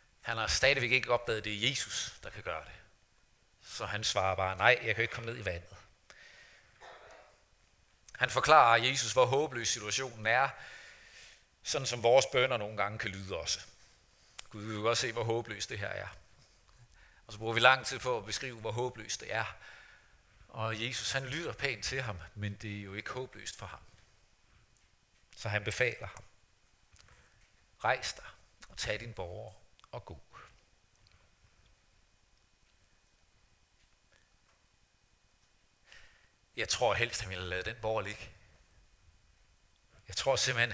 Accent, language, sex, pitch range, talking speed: native, Danish, male, 95-120 Hz, 150 wpm